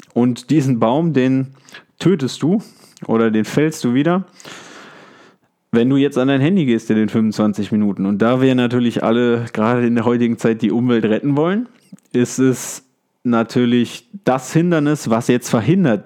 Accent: German